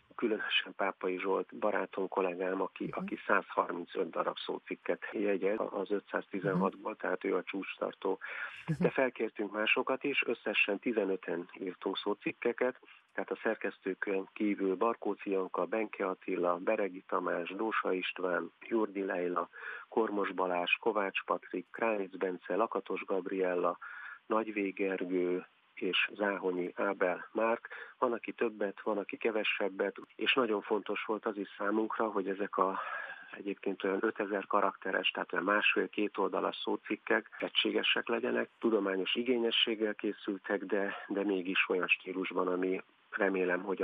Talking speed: 125 wpm